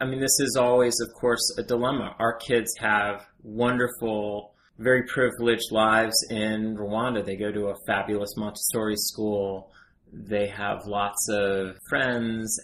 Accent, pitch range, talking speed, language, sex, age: American, 100-115 Hz, 140 wpm, English, male, 30-49